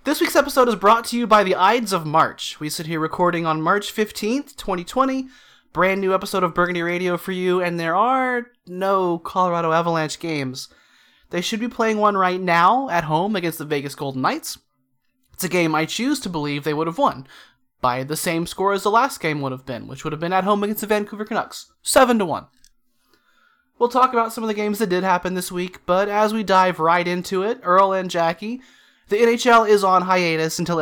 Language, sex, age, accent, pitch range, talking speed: English, male, 30-49, American, 155-205 Hz, 215 wpm